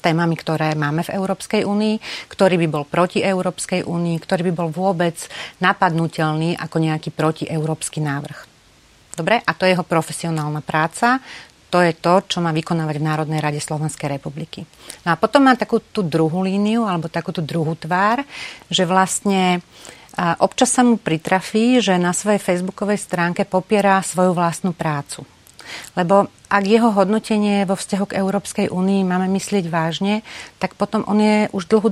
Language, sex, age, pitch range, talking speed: Slovak, female, 40-59, 165-190 Hz, 160 wpm